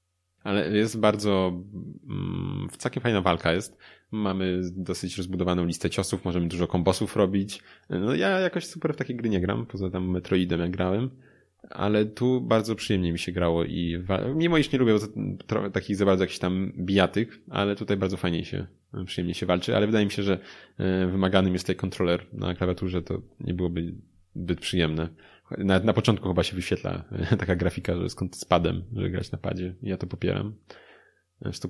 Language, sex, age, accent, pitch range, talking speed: Polish, male, 20-39, native, 90-105 Hz, 180 wpm